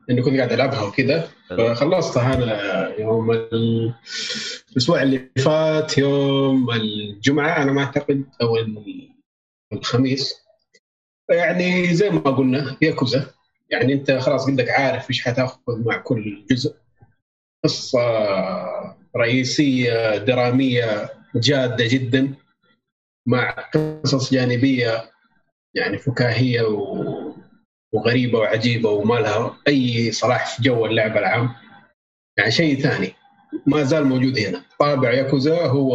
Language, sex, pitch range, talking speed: Arabic, male, 120-145 Hz, 110 wpm